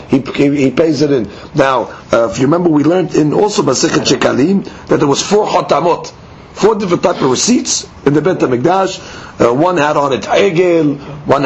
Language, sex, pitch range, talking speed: English, male, 125-185 Hz, 195 wpm